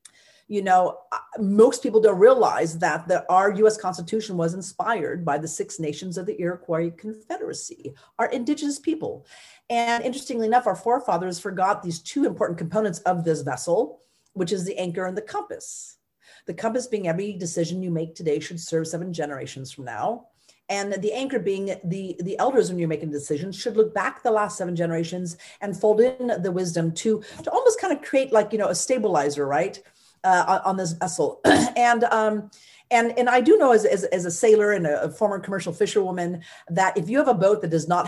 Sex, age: female, 40-59